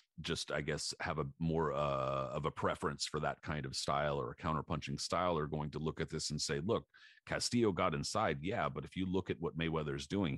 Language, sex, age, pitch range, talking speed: English, male, 40-59, 75-90 Hz, 235 wpm